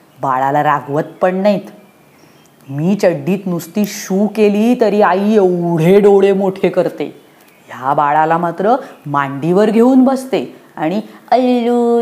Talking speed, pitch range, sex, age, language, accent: 100 wpm, 160-230 Hz, female, 20-39, Hindi, native